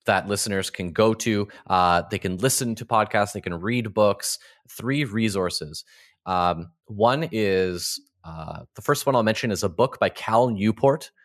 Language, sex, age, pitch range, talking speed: English, male, 20-39, 90-115 Hz, 170 wpm